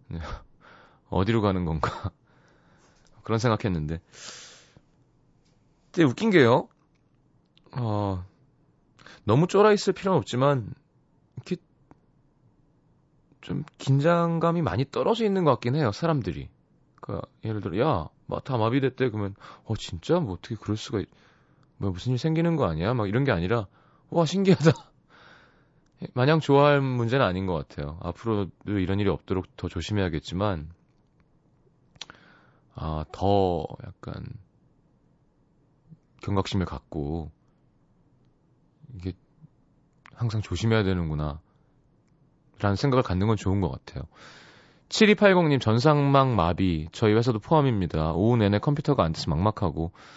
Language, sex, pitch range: Korean, male, 95-145 Hz